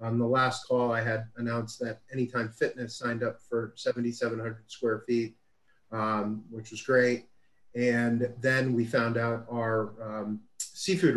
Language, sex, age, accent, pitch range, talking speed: English, male, 30-49, American, 110-130 Hz, 150 wpm